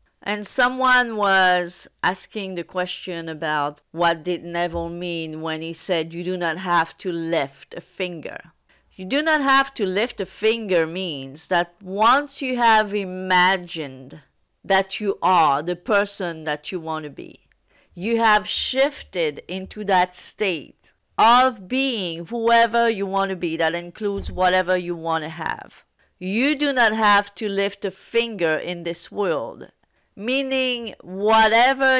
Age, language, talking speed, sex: 40-59, English, 150 wpm, female